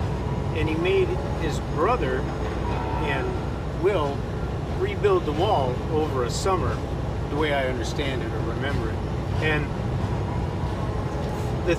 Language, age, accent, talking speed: English, 50-69, American, 115 wpm